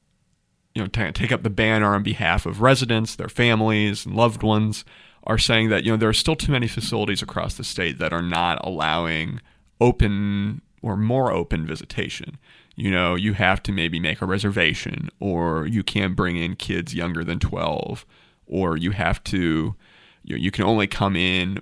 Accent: American